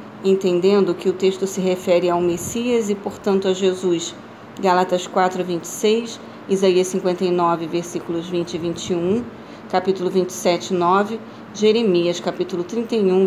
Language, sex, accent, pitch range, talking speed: Portuguese, female, Brazilian, 180-205 Hz, 120 wpm